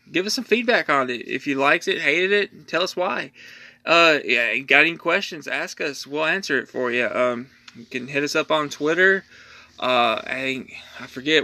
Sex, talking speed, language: male, 205 wpm, English